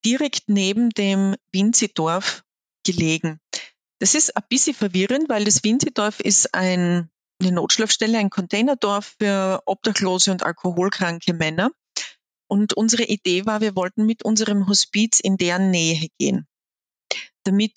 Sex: female